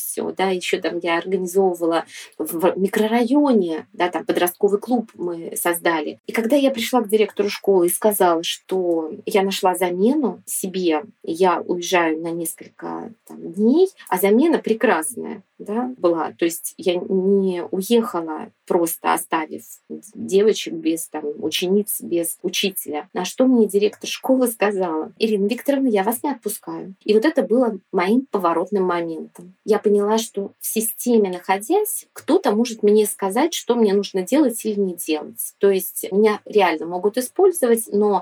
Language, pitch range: Russian, 175-230 Hz